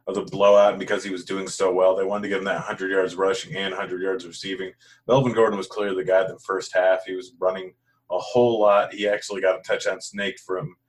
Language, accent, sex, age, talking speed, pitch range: English, American, male, 30-49, 255 wpm, 95-120 Hz